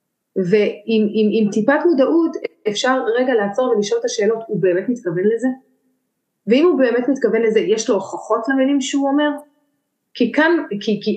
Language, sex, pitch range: Hebrew, female, 205-270 Hz